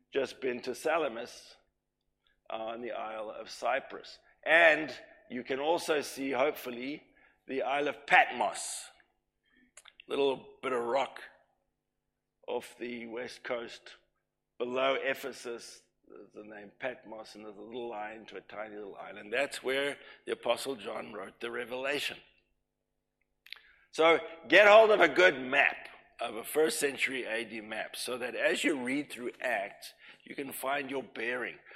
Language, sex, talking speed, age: English, male, 145 wpm, 50-69